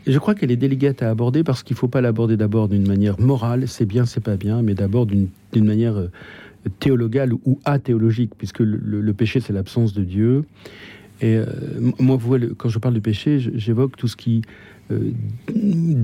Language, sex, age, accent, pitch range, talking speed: French, male, 50-69, French, 105-130 Hz, 195 wpm